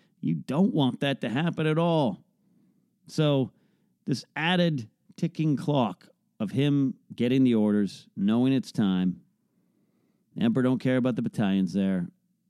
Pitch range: 130-200 Hz